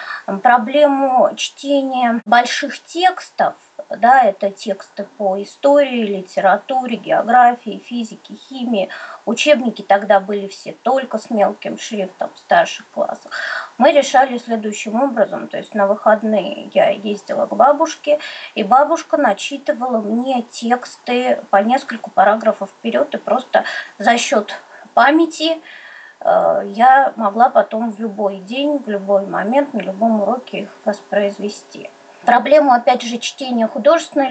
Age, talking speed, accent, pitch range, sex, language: 20-39, 120 wpm, native, 210-280 Hz, female, Russian